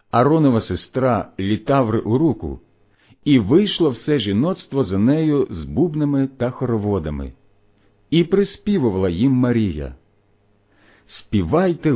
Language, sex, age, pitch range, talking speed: Ukrainian, male, 50-69, 100-145 Hz, 105 wpm